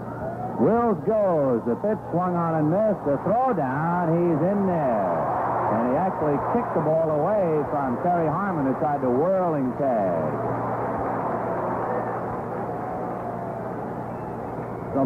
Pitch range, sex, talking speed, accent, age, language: 130-180 Hz, male, 115 wpm, American, 60-79, English